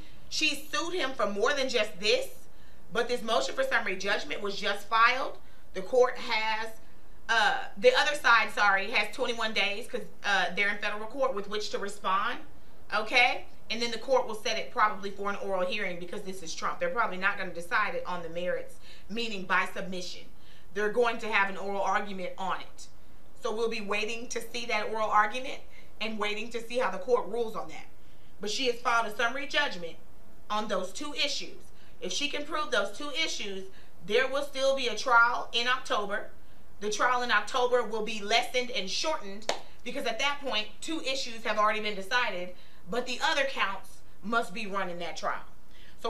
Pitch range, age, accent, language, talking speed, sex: 200-255 Hz, 30-49, American, English, 195 wpm, female